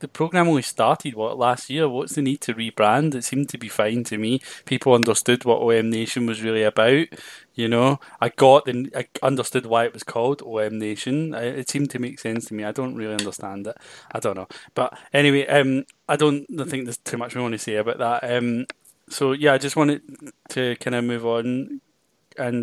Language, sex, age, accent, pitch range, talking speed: English, male, 20-39, British, 115-140 Hz, 220 wpm